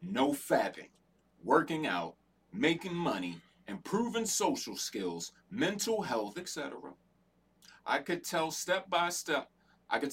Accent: American